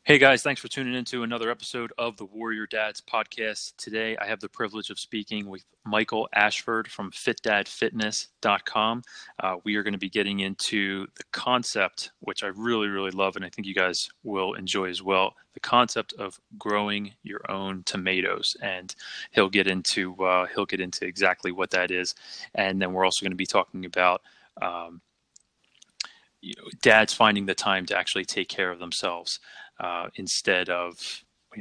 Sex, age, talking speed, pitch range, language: male, 20-39, 180 wpm, 95-110 Hz, English